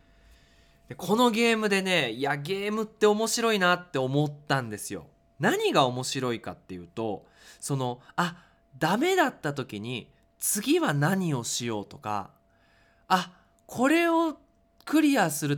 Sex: male